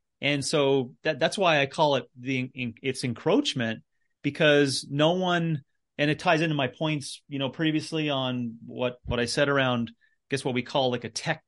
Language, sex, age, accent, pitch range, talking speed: English, male, 30-49, American, 125-155 Hz, 195 wpm